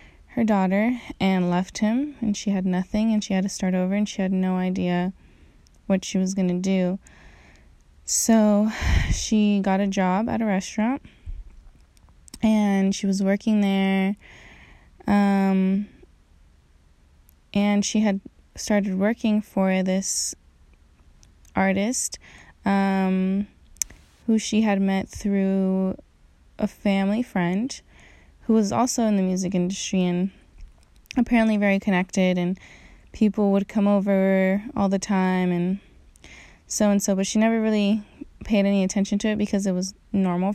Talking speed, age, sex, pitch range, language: 135 wpm, 20-39, female, 185-210 Hz, English